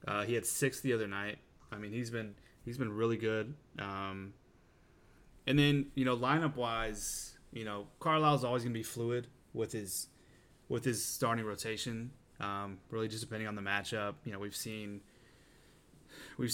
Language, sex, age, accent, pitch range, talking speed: English, male, 20-39, American, 100-125 Hz, 175 wpm